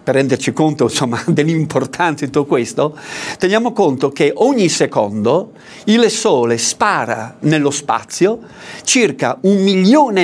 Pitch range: 135-220 Hz